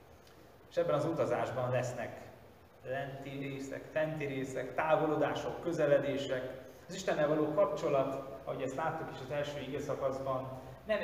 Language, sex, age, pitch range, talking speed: Hungarian, male, 30-49, 120-140 Hz, 125 wpm